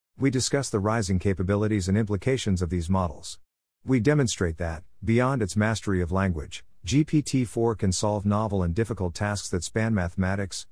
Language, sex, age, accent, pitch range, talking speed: English, male, 50-69, American, 90-115 Hz, 155 wpm